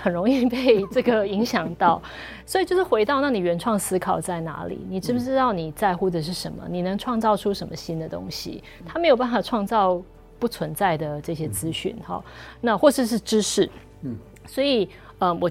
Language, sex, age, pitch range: Chinese, female, 30-49, 170-235 Hz